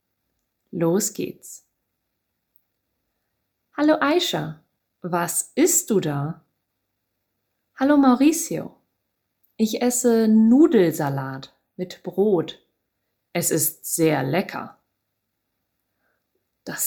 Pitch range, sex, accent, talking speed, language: 125-200 Hz, female, German, 70 wpm, English